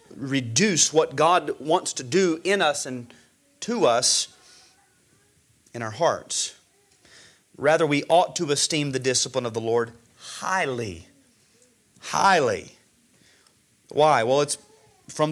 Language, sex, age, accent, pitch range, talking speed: English, male, 30-49, American, 145-215 Hz, 120 wpm